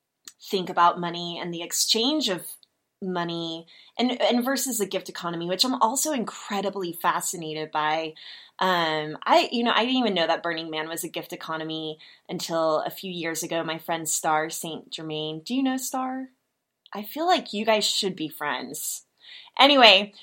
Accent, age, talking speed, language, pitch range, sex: American, 20-39, 170 wpm, English, 170-235 Hz, female